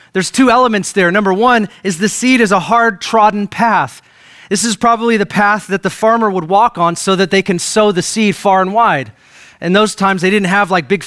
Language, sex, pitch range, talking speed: English, male, 170-210 Hz, 230 wpm